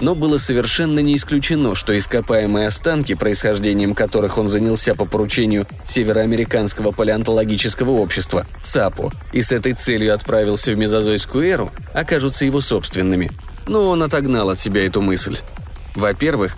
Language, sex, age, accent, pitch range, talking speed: Russian, male, 20-39, native, 105-145 Hz, 135 wpm